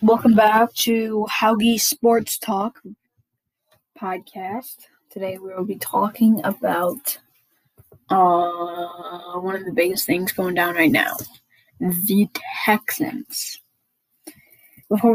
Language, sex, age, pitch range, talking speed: English, female, 10-29, 185-230 Hz, 105 wpm